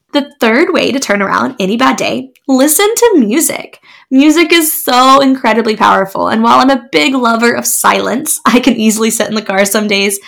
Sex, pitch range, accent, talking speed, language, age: female, 205-265 Hz, American, 200 wpm, English, 10-29